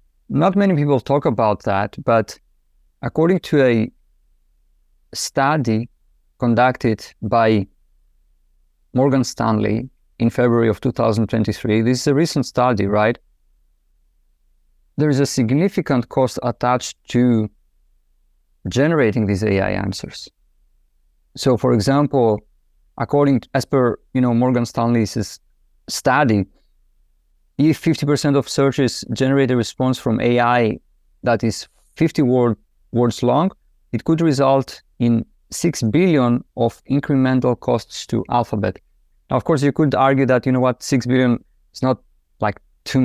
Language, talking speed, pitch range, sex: English, 125 wpm, 90-130 Hz, male